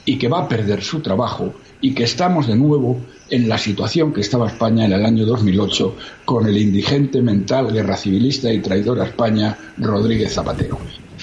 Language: Spanish